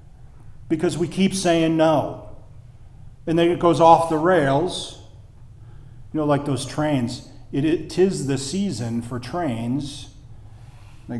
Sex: male